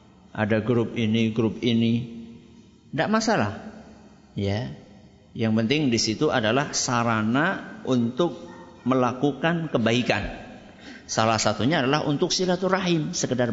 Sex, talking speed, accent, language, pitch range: male, 100 wpm, native, Indonesian, 125-210 Hz